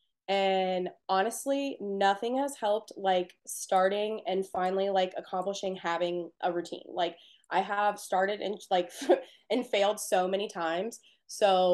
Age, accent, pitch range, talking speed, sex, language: 20-39, American, 180-225 Hz, 135 wpm, female, English